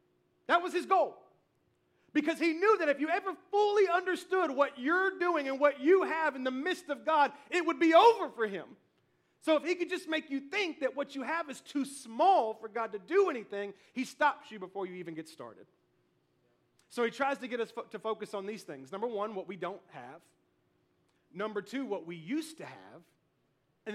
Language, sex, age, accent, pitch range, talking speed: English, male, 40-59, American, 160-265 Hz, 210 wpm